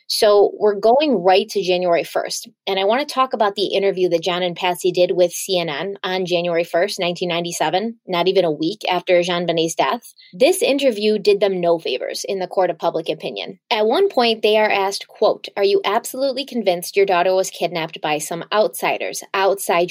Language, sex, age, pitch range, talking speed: English, female, 20-39, 175-215 Hz, 200 wpm